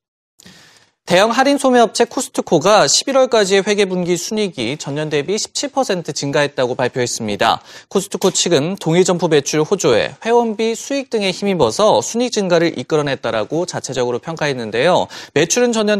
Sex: male